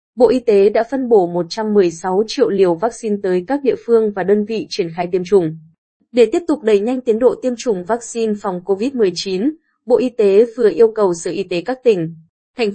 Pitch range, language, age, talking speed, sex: 190-235 Hz, Vietnamese, 20-39, 210 wpm, female